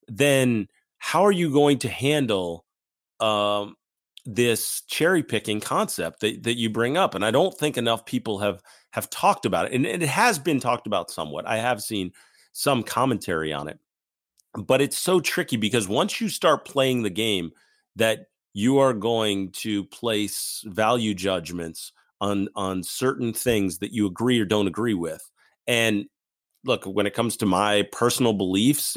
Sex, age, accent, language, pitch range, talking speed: male, 40-59, American, English, 95-125 Hz, 170 wpm